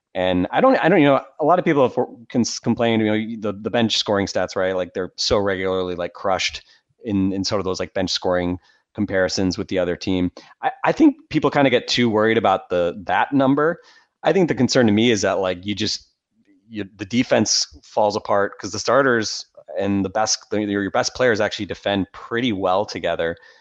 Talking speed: 210 wpm